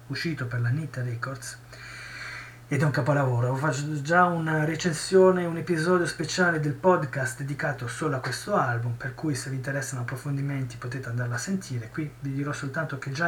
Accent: native